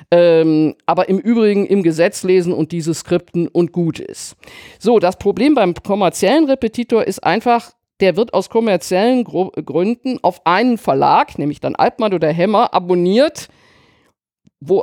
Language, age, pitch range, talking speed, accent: German, 50-69, 180-235 Hz, 140 wpm, German